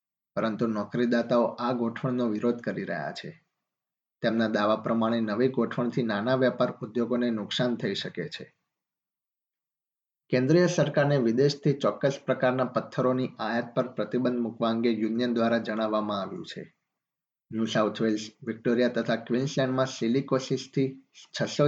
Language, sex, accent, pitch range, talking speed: Gujarati, male, native, 115-130 Hz, 120 wpm